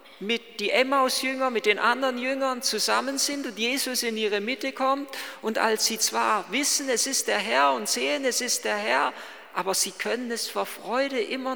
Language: German